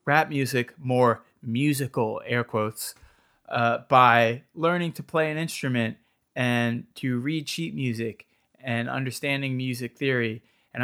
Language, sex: English, male